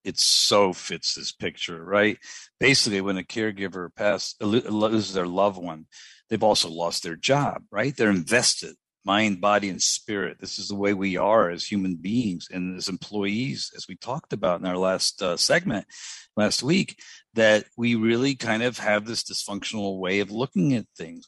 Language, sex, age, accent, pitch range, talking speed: English, male, 50-69, American, 95-115 Hz, 180 wpm